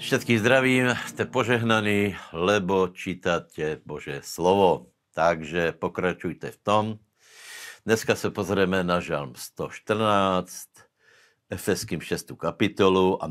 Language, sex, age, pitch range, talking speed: Slovak, male, 60-79, 85-110 Hz, 100 wpm